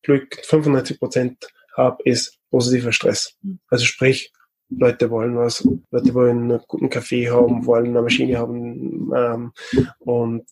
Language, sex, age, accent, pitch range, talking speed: German, male, 20-39, German, 125-145 Hz, 130 wpm